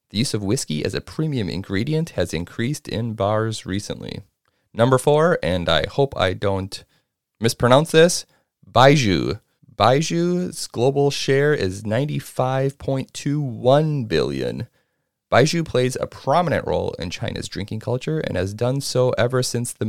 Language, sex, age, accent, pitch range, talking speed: English, male, 30-49, American, 100-135 Hz, 135 wpm